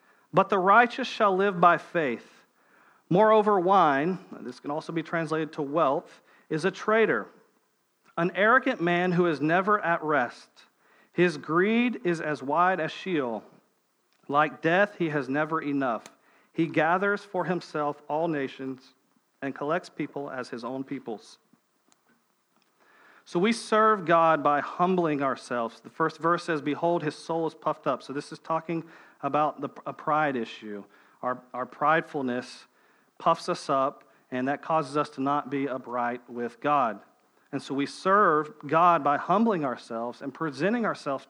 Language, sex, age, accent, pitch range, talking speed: English, male, 40-59, American, 140-180 Hz, 155 wpm